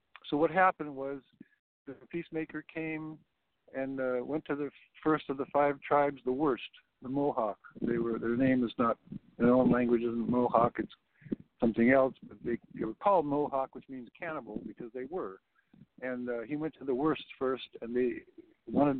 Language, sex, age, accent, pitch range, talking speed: English, male, 60-79, American, 125-155 Hz, 175 wpm